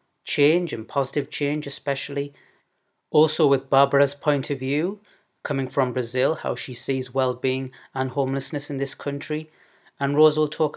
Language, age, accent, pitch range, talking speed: English, 30-49, British, 130-145 Hz, 150 wpm